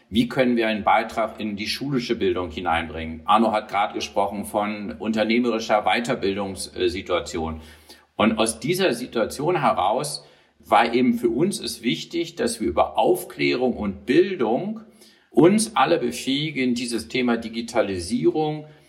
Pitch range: 110-135 Hz